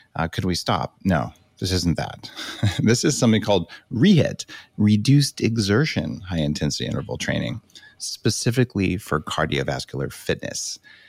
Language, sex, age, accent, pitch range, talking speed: English, male, 30-49, American, 85-120 Hz, 125 wpm